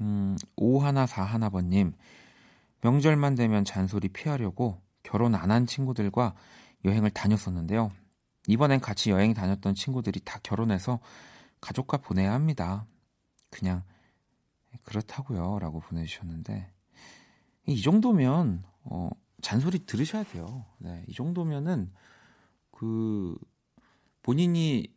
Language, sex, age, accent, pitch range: Korean, male, 40-59, native, 95-135 Hz